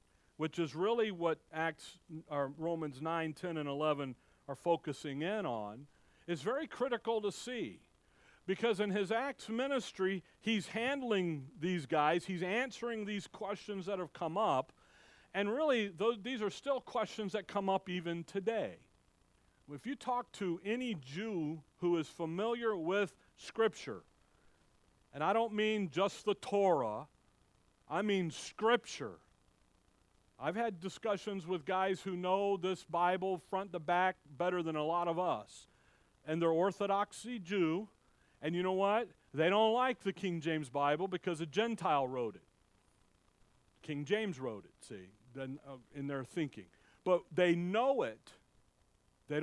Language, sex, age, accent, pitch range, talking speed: English, male, 50-69, American, 160-215 Hz, 145 wpm